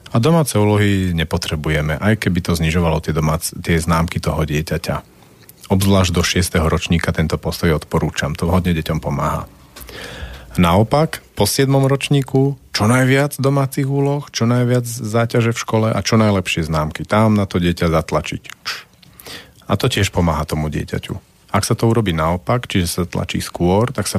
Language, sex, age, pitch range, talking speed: Slovak, male, 40-59, 85-110 Hz, 160 wpm